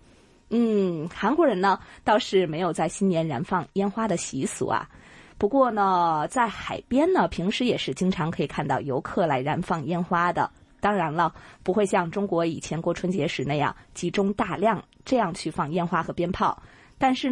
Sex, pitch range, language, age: female, 175-225 Hz, Chinese, 20-39